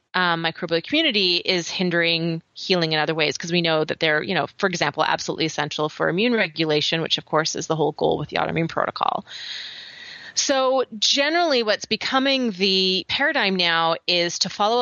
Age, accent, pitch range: 30-49, American, 165-195 Hz